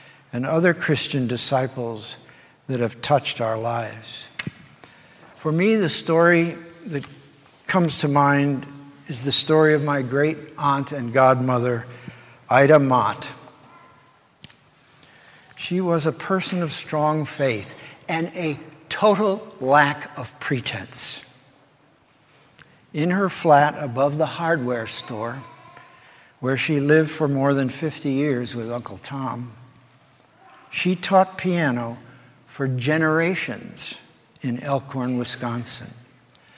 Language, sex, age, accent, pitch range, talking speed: English, male, 60-79, American, 130-165 Hz, 110 wpm